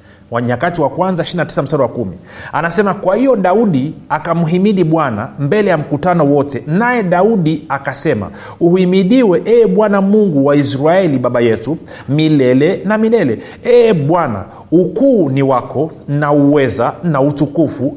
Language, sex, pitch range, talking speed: Swahili, male, 150-210 Hz, 135 wpm